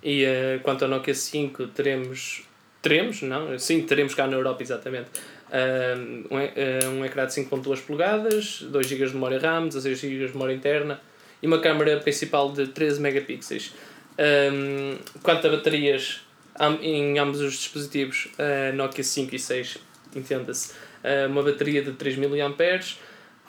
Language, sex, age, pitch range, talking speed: Portuguese, male, 20-39, 140-180 Hz, 160 wpm